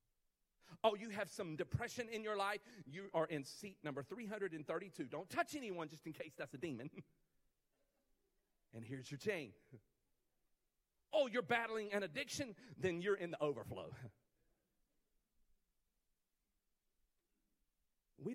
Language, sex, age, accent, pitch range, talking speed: English, male, 40-59, American, 125-180 Hz, 125 wpm